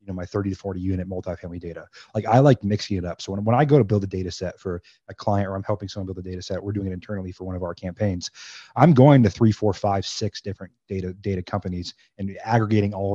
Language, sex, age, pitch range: English, male, 30-49, 95-115 Hz